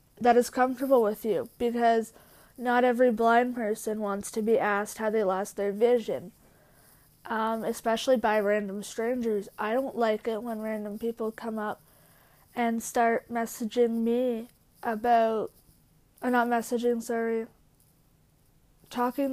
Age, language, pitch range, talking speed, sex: 20-39, English, 215-250 Hz, 135 wpm, female